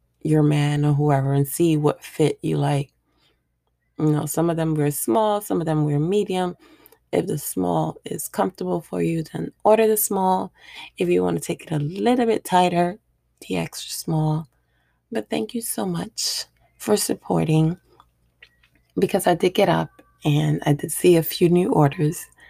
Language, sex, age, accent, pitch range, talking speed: English, female, 20-39, American, 140-195 Hz, 175 wpm